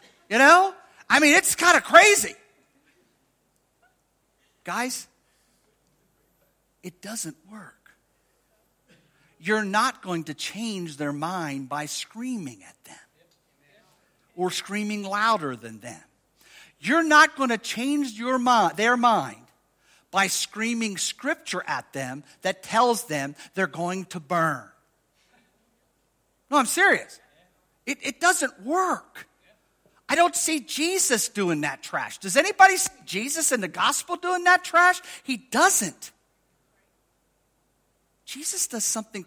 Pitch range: 170-265 Hz